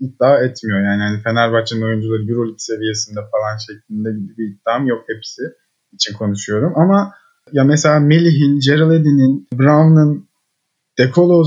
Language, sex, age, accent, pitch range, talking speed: Turkish, male, 30-49, native, 120-165 Hz, 125 wpm